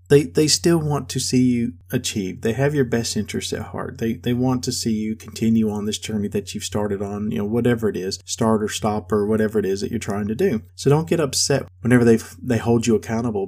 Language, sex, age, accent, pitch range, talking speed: English, male, 40-59, American, 105-125 Hz, 245 wpm